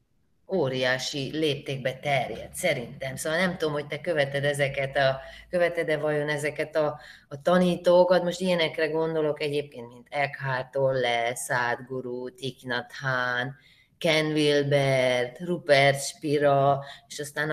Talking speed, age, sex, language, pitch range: 115 wpm, 20-39, female, Hungarian, 135-165 Hz